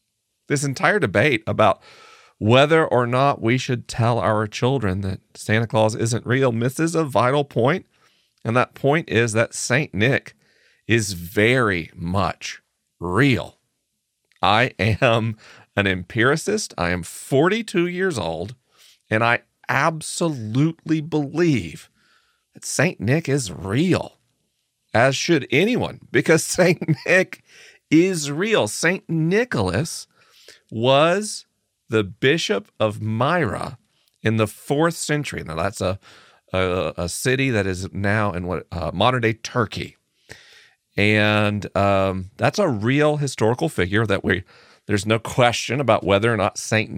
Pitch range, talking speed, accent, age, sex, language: 100-140 Hz, 130 wpm, American, 40-59, male, English